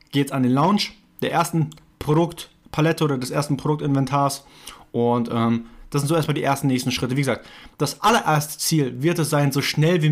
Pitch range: 130-155 Hz